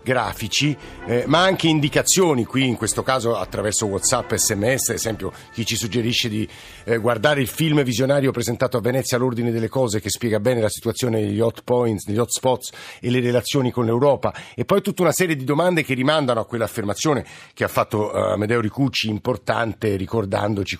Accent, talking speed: native, 185 wpm